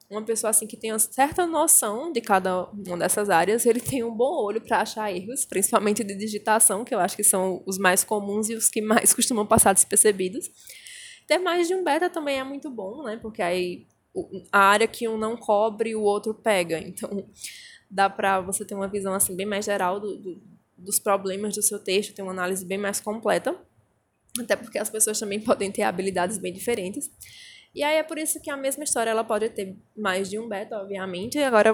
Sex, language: female, Portuguese